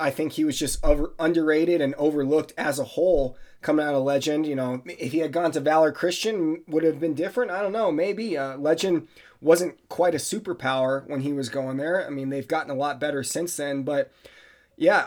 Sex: male